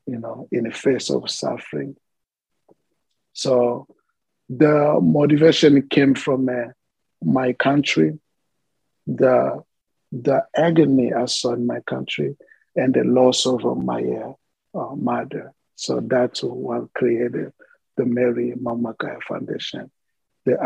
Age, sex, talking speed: 50-69, male, 115 wpm